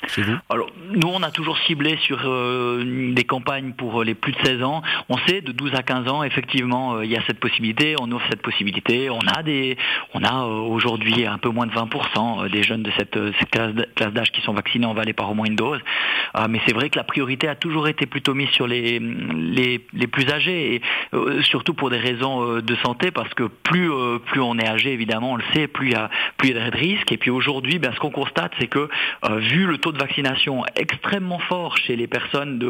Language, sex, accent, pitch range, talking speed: French, male, French, 115-140 Hz, 245 wpm